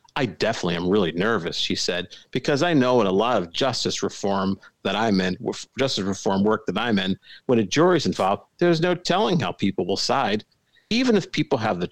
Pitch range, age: 100-135 Hz, 50-69